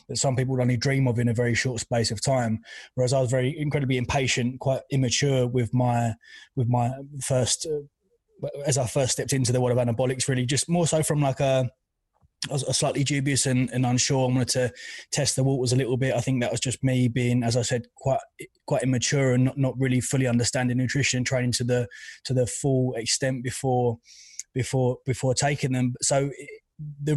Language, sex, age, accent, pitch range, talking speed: English, male, 20-39, British, 125-135 Hz, 215 wpm